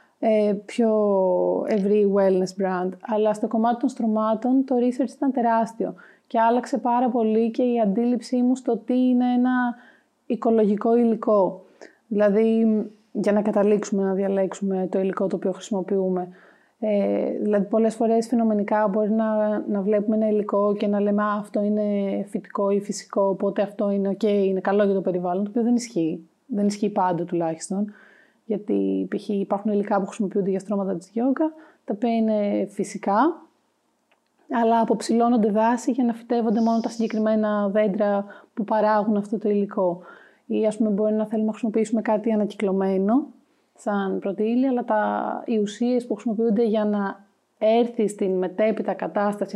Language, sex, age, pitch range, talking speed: Greek, female, 30-49, 200-235 Hz, 155 wpm